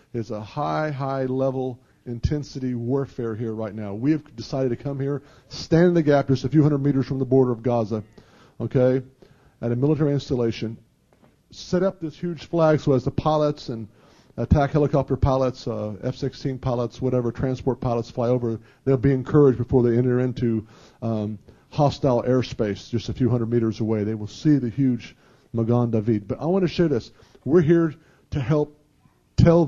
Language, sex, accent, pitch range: English, male, American, 115-145 Hz